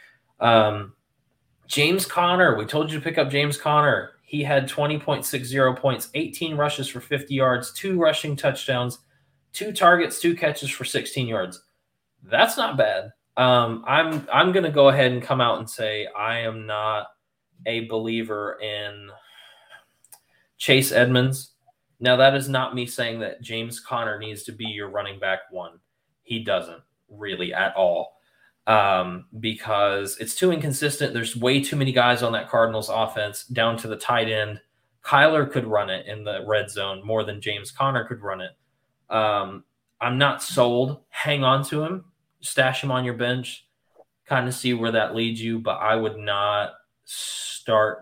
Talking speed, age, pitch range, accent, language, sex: 165 wpm, 20-39, 110-140 Hz, American, English, male